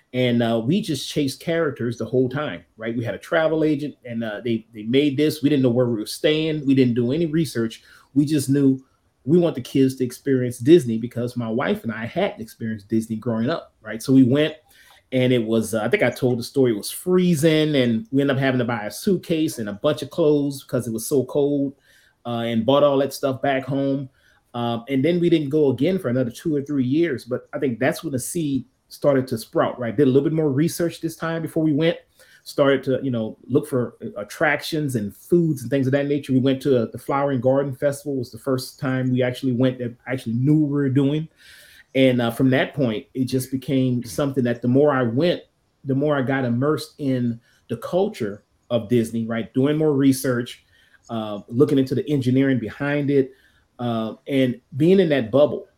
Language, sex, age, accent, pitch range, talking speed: English, male, 30-49, American, 120-145 Hz, 230 wpm